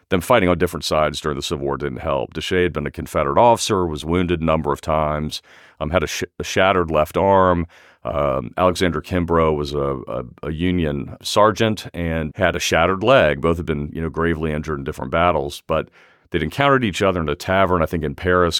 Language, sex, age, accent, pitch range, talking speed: English, male, 40-59, American, 75-85 Hz, 215 wpm